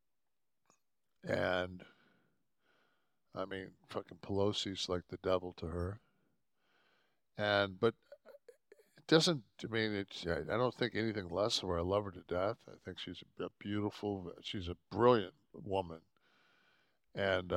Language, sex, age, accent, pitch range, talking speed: English, male, 60-79, American, 90-105 Hz, 135 wpm